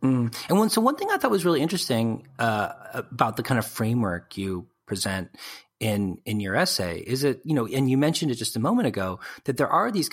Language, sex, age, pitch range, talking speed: English, male, 30-49, 100-130 Hz, 230 wpm